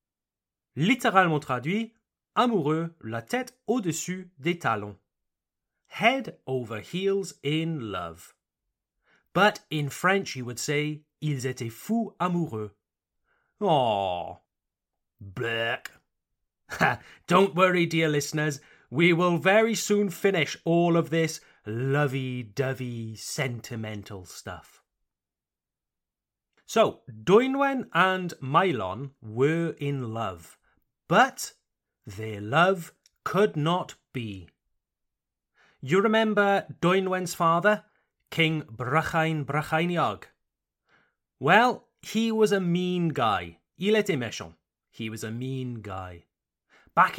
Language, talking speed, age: French, 90 wpm, 30-49